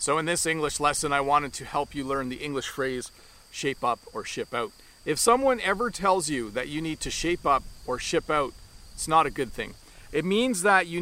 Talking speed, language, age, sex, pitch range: 230 wpm, English, 40-59, male, 145-195 Hz